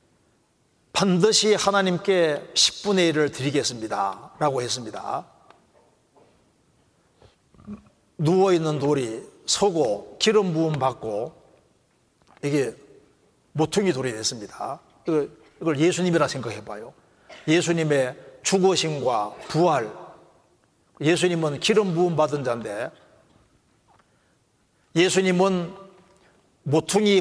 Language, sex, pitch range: Korean, male, 155-195 Hz